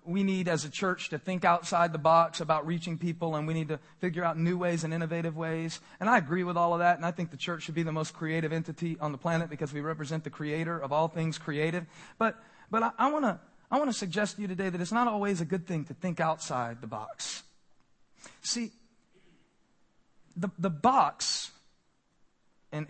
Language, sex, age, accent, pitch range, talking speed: English, male, 40-59, American, 125-170 Hz, 215 wpm